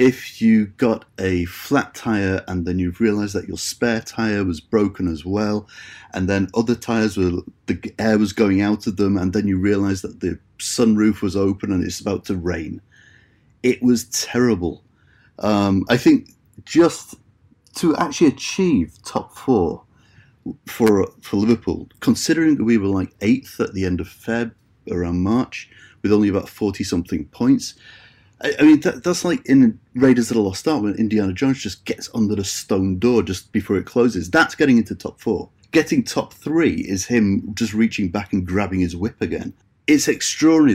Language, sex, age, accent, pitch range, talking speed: English, male, 30-49, British, 95-120 Hz, 180 wpm